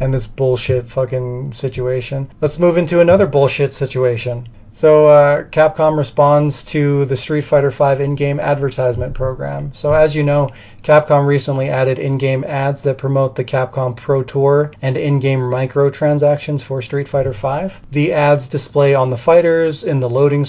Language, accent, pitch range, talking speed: English, American, 125-145 Hz, 160 wpm